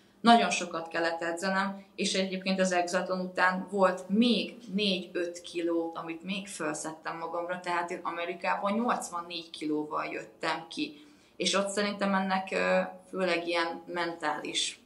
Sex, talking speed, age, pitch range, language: female, 125 wpm, 20-39, 165-195 Hz, Hungarian